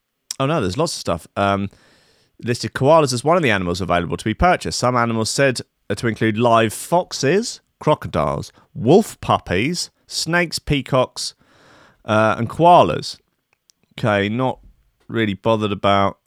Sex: male